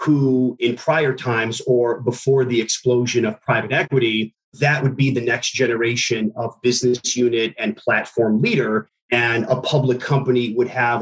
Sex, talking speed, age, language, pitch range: male, 160 wpm, 30-49, English, 120-135 Hz